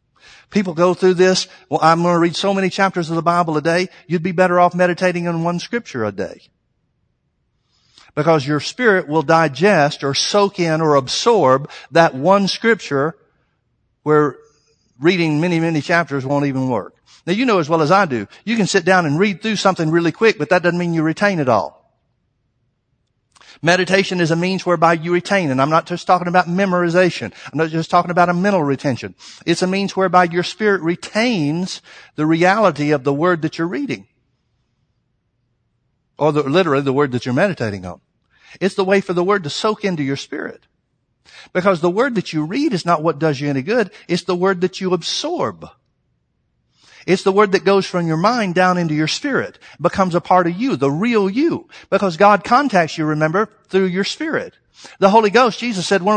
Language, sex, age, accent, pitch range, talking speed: English, male, 60-79, American, 155-200 Hz, 195 wpm